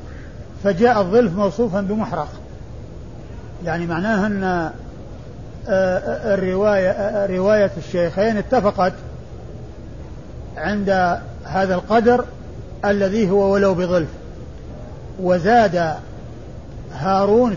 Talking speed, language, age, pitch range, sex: 70 wpm, Arabic, 50-69, 180-205 Hz, male